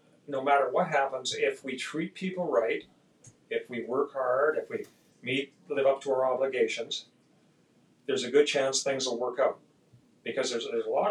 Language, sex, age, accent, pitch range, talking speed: English, male, 40-59, American, 125-180 Hz, 185 wpm